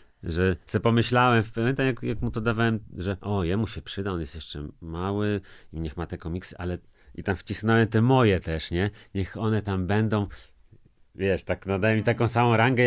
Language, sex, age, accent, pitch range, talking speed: Polish, male, 40-59, native, 80-105 Hz, 195 wpm